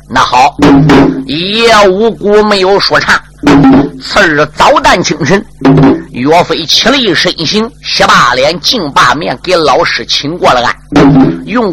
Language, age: Chinese, 50-69